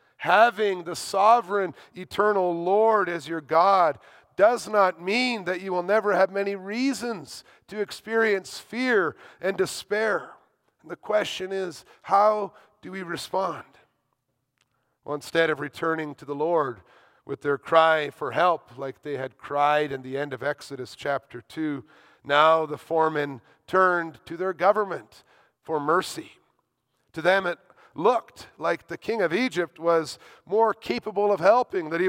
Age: 40-59